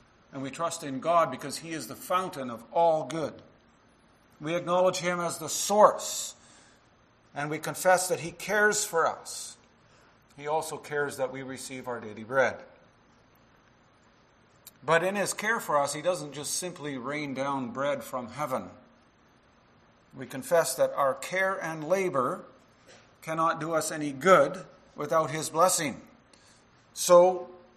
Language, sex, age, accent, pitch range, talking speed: English, male, 50-69, American, 135-180 Hz, 145 wpm